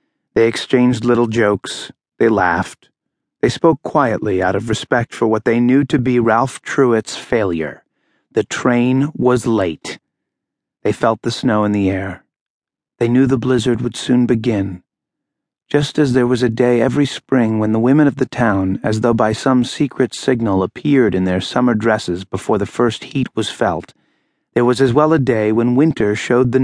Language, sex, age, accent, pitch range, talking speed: English, male, 30-49, American, 105-130 Hz, 180 wpm